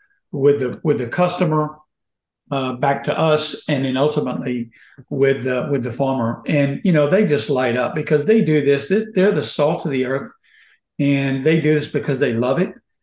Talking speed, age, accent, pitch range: 195 wpm, 60-79, American, 135-150 Hz